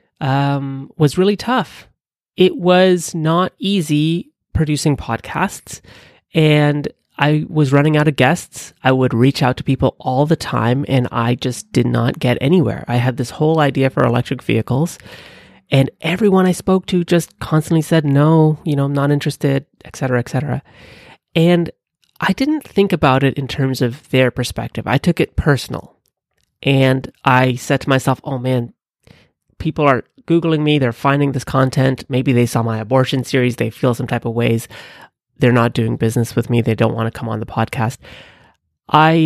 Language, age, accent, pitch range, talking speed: English, 30-49, American, 125-155 Hz, 175 wpm